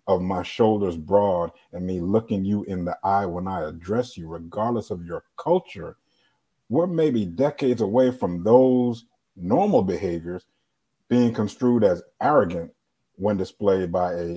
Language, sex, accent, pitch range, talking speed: English, male, American, 90-120 Hz, 145 wpm